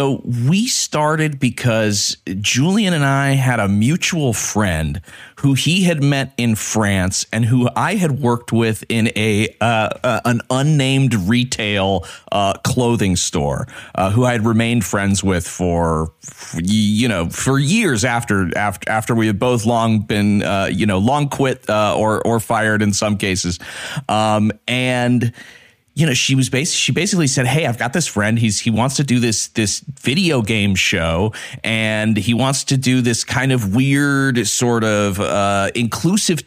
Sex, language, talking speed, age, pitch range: male, English, 170 wpm, 30-49, 105-135 Hz